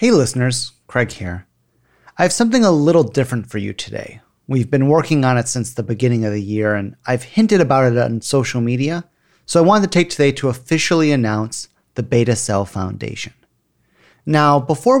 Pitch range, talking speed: 115-140 Hz, 190 wpm